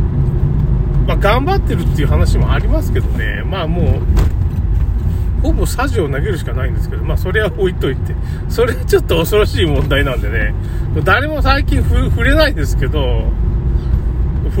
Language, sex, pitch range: Japanese, male, 70-90 Hz